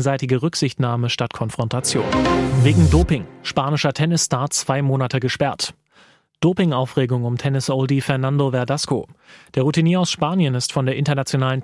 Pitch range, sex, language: 130-150 Hz, male, German